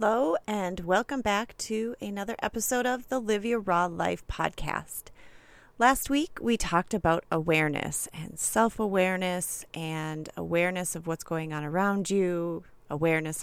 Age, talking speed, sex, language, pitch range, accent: 30-49, 135 wpm, female, English, 160-220 Hz, American